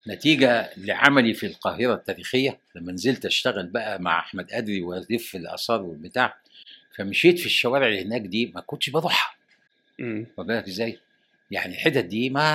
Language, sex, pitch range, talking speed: Arabic, male, 110-155 Hz, 150 wpm